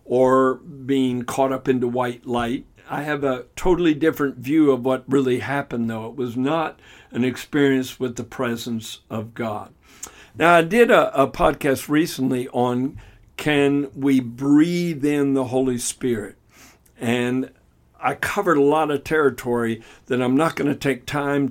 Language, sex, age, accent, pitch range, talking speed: English, male, 60-79, American, 120-140 Hz, 160 wpm